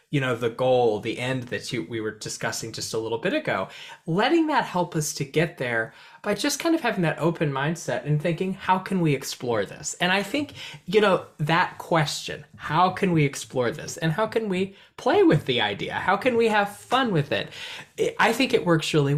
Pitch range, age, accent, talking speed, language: 145-195 Hz, 20-39, American, 215 wpm, English